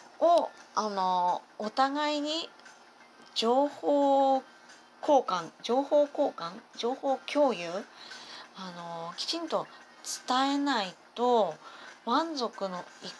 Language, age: Japanese, 30-49